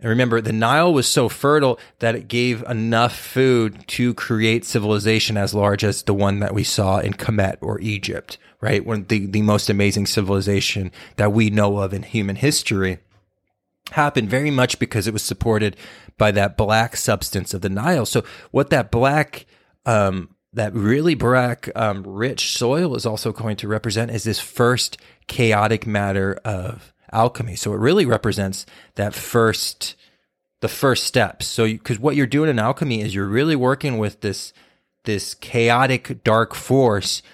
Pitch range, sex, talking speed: 105-125 Hz, male, 165 wpm